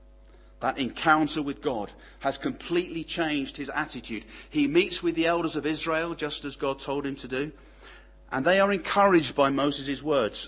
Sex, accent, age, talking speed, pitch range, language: male, British, 40-59, 170 wpm, 115-165 Hz, English